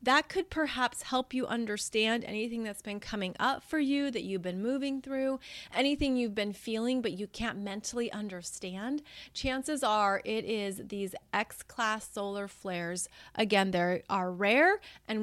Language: English